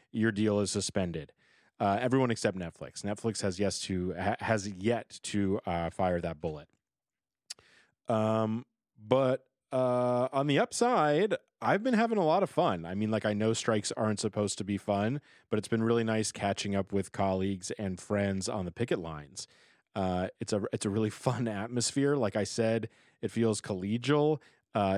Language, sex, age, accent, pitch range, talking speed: English, male, 30-49, American, 100-125 Hz, 175 wpm